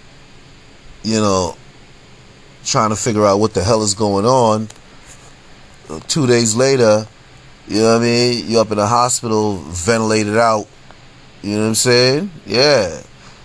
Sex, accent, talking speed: male, American, 145 wpm